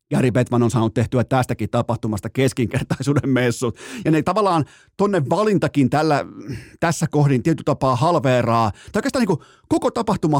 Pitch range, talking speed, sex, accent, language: 120-155 Hz, 145 wpm, male, native, Finnish